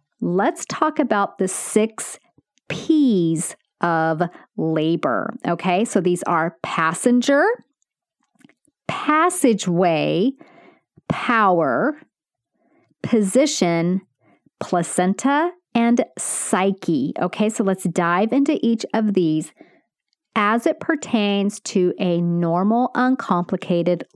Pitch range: 180-270 Hz